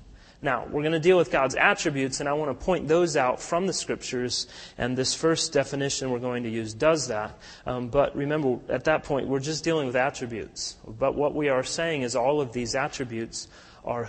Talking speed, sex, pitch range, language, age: 215 wpm, male, 115-155 Hz, English, 30-49